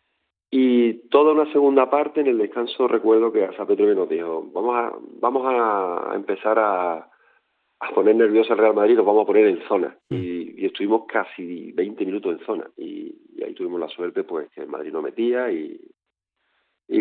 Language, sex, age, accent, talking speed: Spanish, male, 40-59, Spanish, 185 wpm